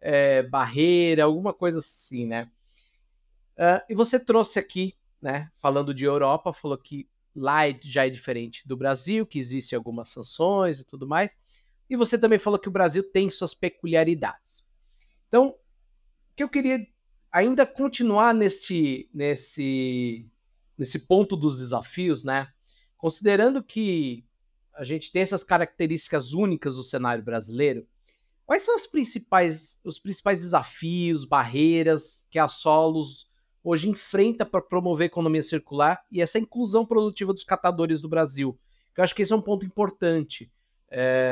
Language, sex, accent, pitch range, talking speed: Portuguese, male, Brazilian, 135-190 Hz, 140 wpm